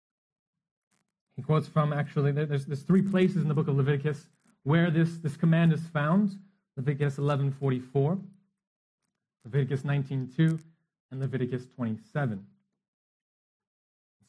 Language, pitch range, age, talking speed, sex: English, 130-175 Hz, 30-49, 105 wpm, male